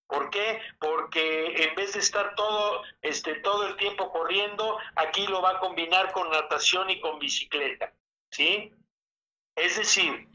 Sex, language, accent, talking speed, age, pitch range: male, Spanish, Mexican, 150 wpm, 50-69, 160-205 Hz